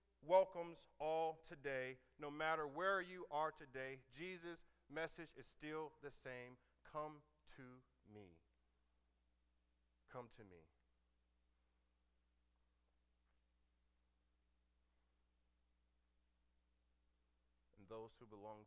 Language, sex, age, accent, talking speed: English, male, 30-49, American, 80 wpm